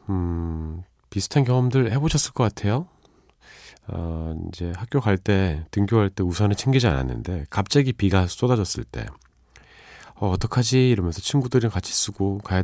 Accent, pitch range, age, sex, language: native, 80-120 Hz, 40-59, male, Korean